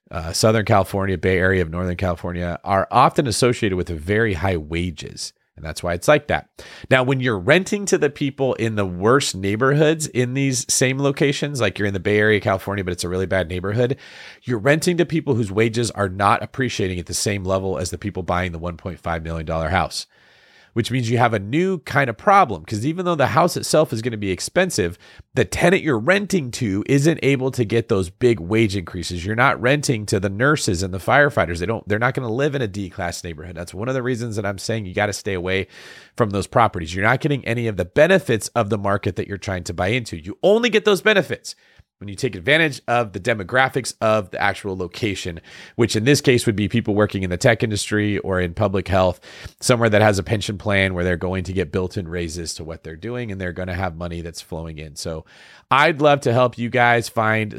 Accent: American